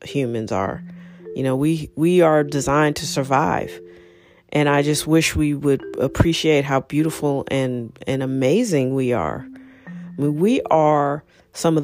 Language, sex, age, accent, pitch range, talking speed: English, female, 40-59, American, 130-165 Hz, 150 wpm